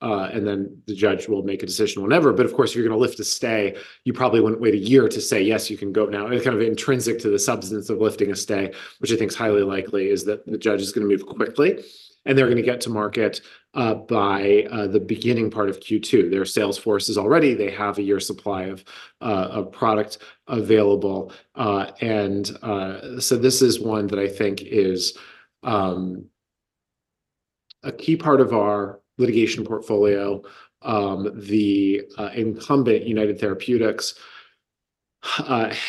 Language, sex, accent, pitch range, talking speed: English, male, American, 100-120 Hz, 190 wpm